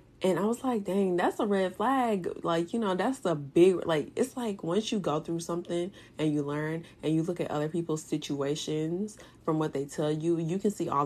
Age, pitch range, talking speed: 20-39, 150-185 Hz, 230 wpm